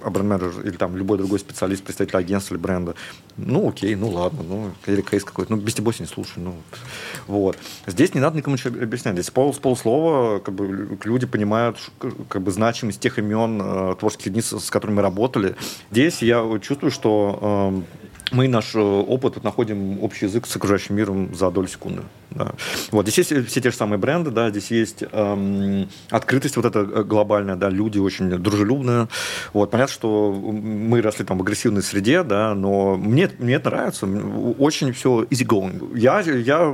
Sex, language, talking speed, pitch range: male, Russian, 180 wpm, 100-120 Hz